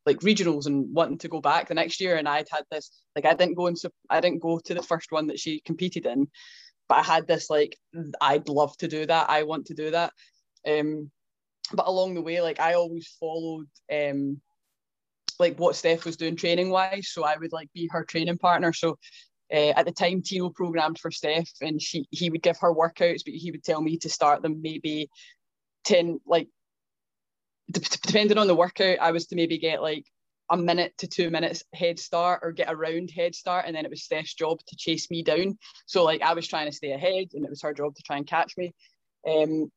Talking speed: 225 wpm